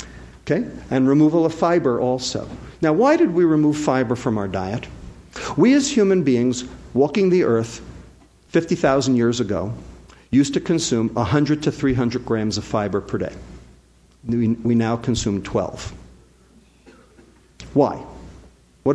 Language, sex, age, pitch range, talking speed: English, male, 50-69, 110-150 Hz, 135 wpm